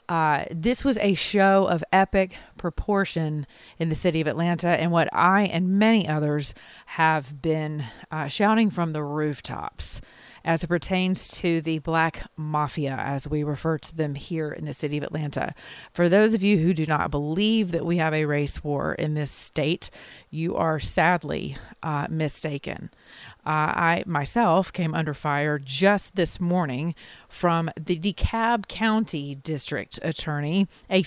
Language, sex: English, female